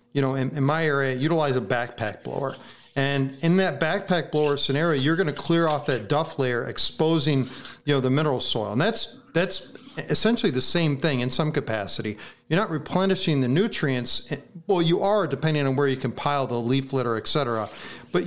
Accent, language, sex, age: American, English, male, 40-59